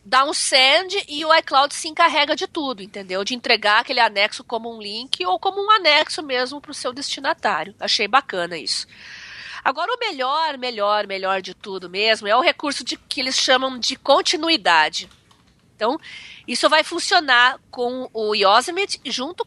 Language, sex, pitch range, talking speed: Portuguese, female, 225-305 Hz, 170 wpm